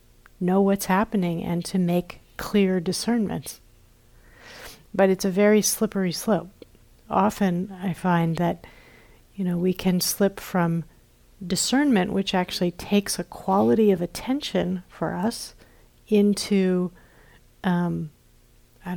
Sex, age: female, 50-69